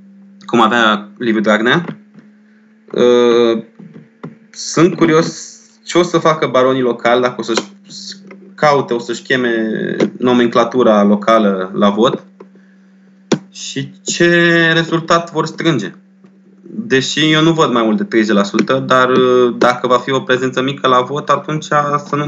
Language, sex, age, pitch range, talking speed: Romanian, male, 20-39, 120-185 Hz, 130 wpm